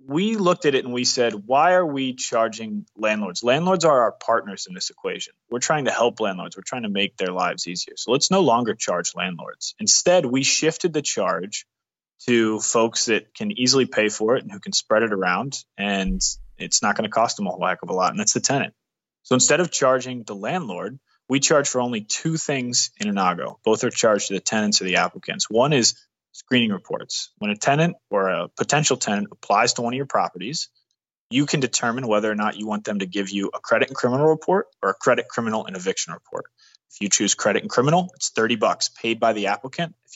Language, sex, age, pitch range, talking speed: English, male, 20-39, 105-160 Hz, 225 wpm